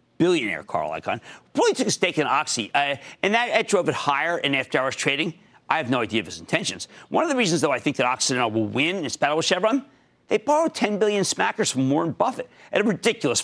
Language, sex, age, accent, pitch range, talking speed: English, male, 40-59, American, 125-200 Hz, 235 wpm